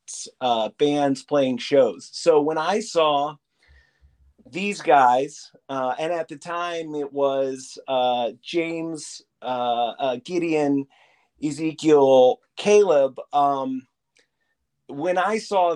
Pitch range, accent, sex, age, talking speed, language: 135-170 Hz, American, male, 30-49, 105 wpm, English